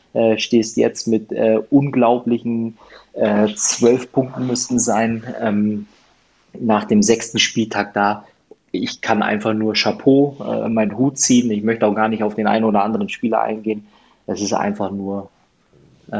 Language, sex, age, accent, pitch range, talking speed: German, male, 20-39, German, 105-115 Hz, 160 wpm